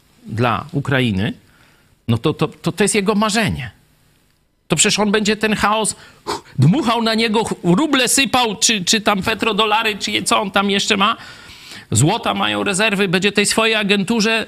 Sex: male